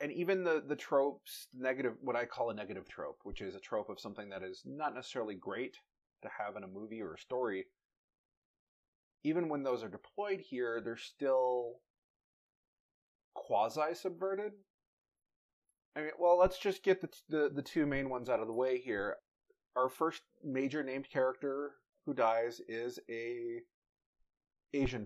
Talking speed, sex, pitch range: 165 wpm, male, 115-165 Hz